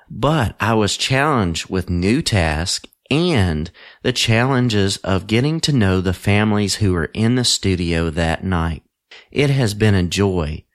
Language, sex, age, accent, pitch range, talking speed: English, male, 40-59, American, 90-115 Hz, 155 wpm